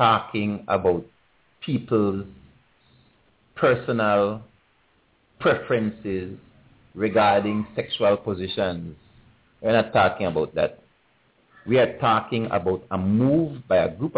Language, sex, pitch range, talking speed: English, male, 95-115 Hz, 95 wpm